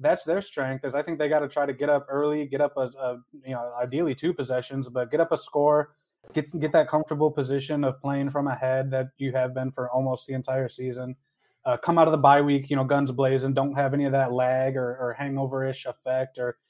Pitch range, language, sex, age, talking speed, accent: 130-145 Hz, English, male, 20-39, 245 wpm, American